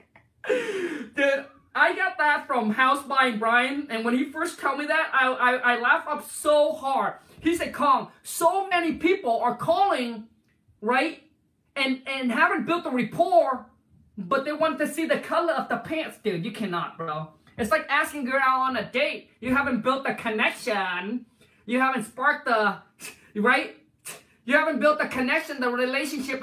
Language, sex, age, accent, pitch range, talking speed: English, male, 20-39, American, 225-300 Hz, 175 wpm